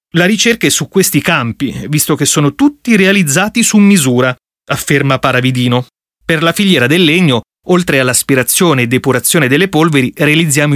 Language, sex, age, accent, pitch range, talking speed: Italian, male, 30-49, native, 130-190 Hz, 150 wpm